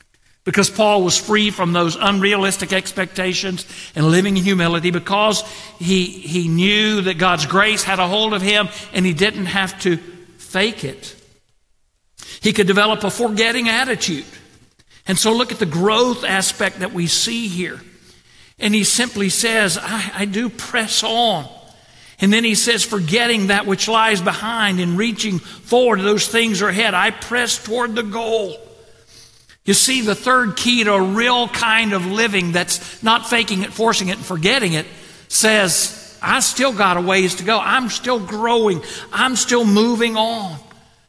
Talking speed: 165 wpm